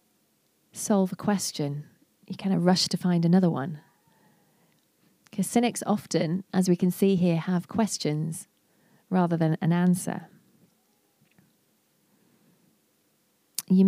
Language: English